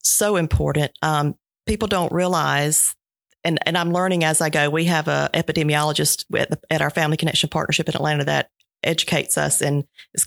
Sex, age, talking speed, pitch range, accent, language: female, 40-59, 180 wpm, 150-180 Hz, American, English